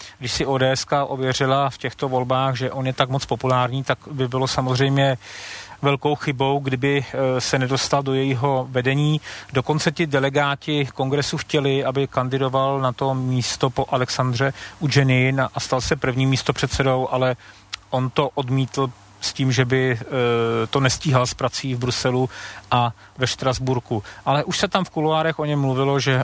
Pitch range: 125-140 Hz